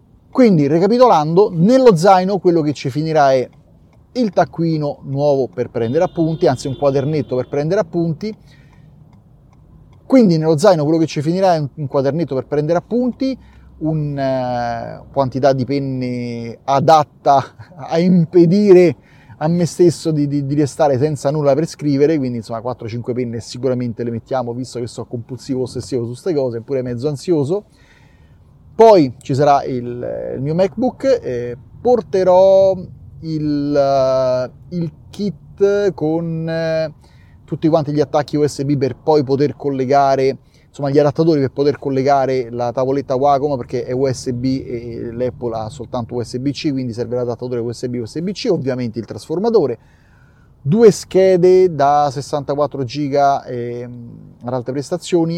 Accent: native